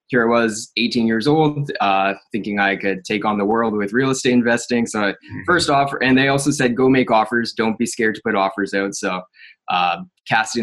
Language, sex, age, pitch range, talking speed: English, male, 20-39, 105-130 Hz, 215 wpm